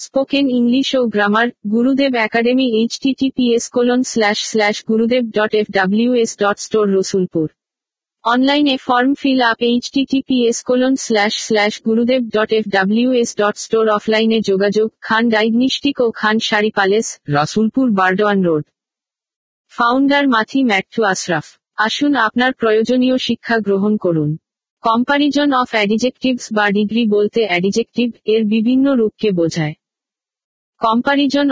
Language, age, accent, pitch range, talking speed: Bengali, 50-69, native, 210-250 Hz, 90 wpm